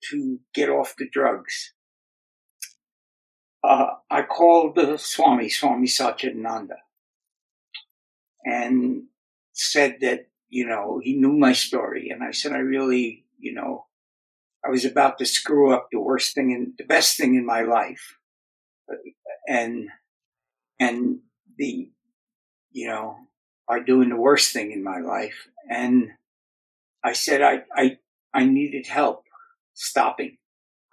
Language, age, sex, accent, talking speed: English, 60-79, male, American, 130 wpm